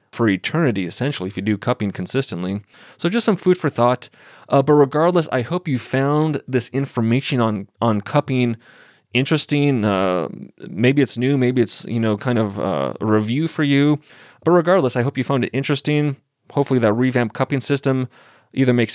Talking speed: 180 wpm